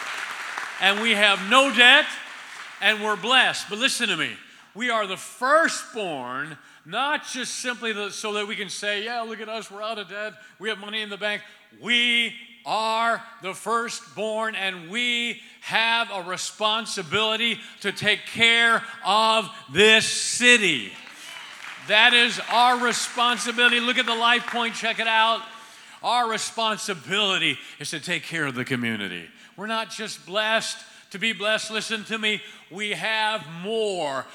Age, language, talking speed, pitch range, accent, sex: 50-69, English, 150 wpm, 205-235 Hz, American, male